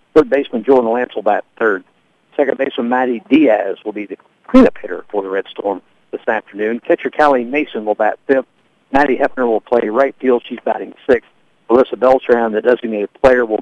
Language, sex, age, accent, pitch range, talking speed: English, male, 60-79, American, 115-155 Hz, 190 wpm